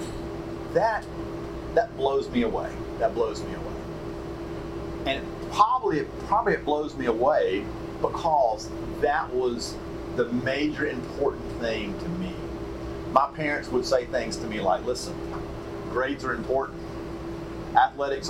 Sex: male